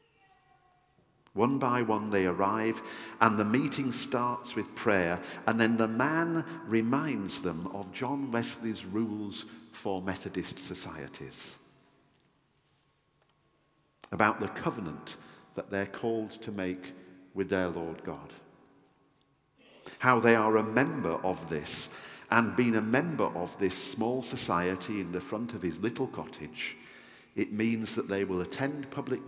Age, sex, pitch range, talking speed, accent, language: 50-69, male, 90-125 Hz, 135 wpm, British, English